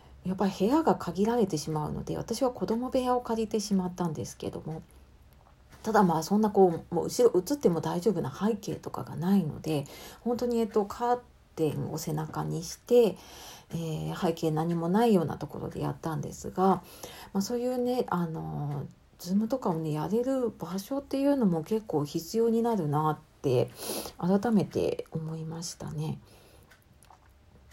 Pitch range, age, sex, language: 165-230 Hz, 40-59, female, Japanese